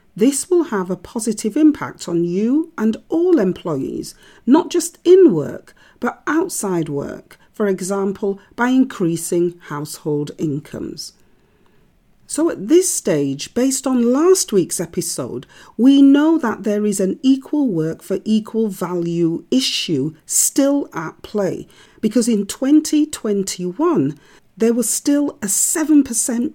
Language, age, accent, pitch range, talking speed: English, 40-59, British, 180-275 Hz, 125 wpm